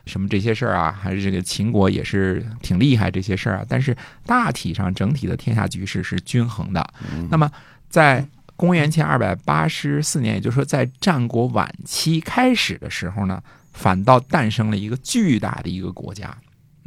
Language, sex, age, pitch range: Chinese, male, 50-69, 100-145 Hz